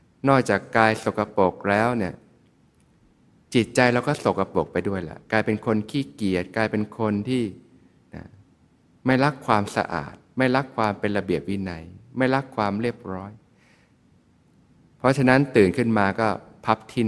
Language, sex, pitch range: Thai, male, 95-115 Hz